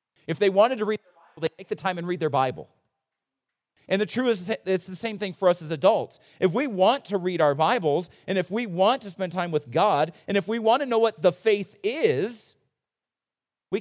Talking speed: 235 wpm